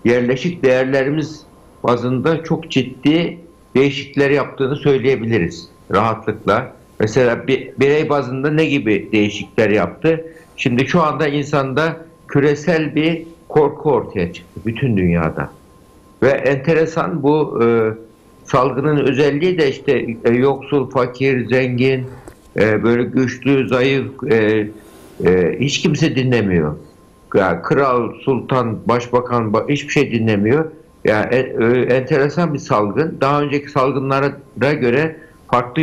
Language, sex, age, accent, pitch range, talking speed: Turkish, male, 60-79, native, 120-155 Hz, 105 wpm